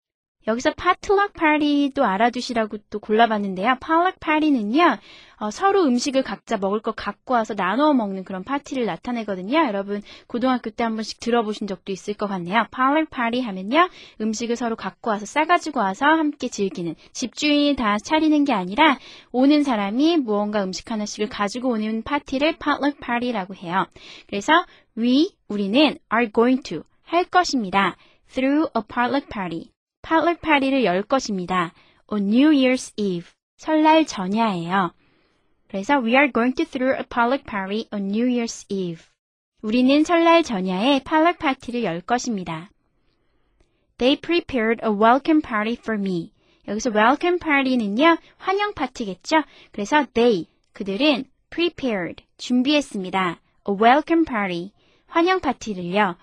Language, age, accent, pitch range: Korean, 20-39, native, 205-295 Hz